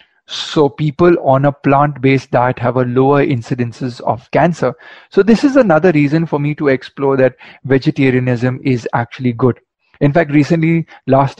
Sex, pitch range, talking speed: male, 130-155 Hz, 165 wpm